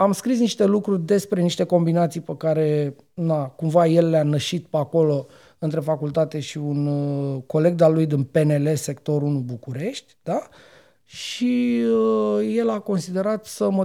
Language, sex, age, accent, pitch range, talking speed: Romanian, male, 30-49, native, 155-215 Hz, 155 wpm